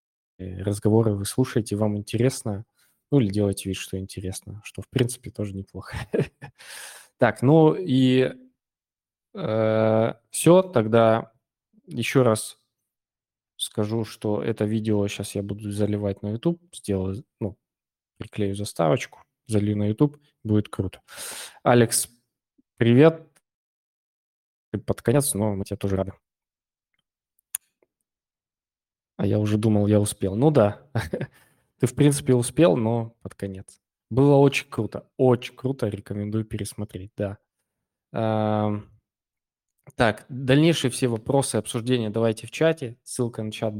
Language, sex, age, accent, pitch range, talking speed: Russian, male, 20-39, native, 105-125 Hz, 115 wpm